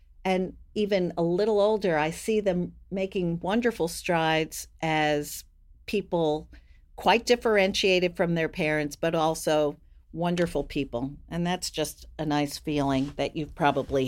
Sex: female